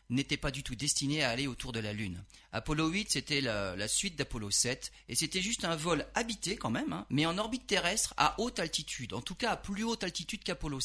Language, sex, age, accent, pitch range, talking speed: French, male, 40-59, French, 130-190 Hz, 240 wpm